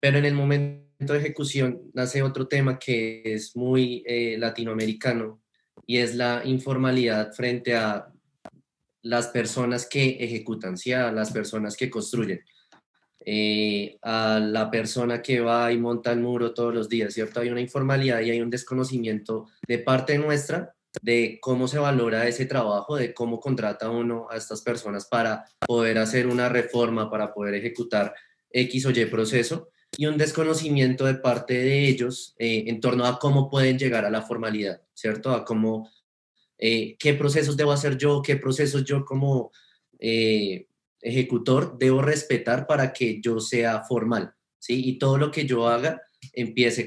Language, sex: Spanish, male